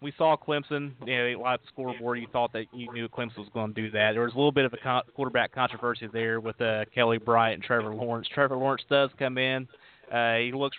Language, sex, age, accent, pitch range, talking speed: English, male, 30-49, American, 115-130 Hz, 250 wpm